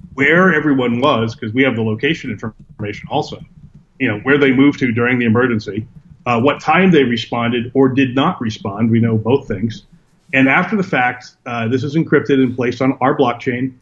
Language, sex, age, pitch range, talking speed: English, male, 30-49, 120-150 Hz, 195 wpm